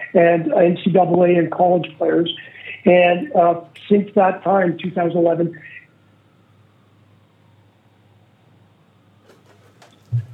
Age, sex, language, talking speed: 50-69, male, English, 65 wpm